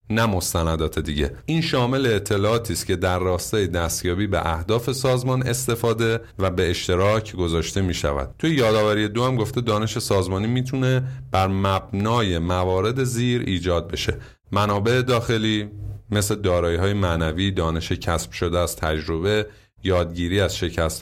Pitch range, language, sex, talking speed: 85-110 Hz, Persian, male, 140 wpm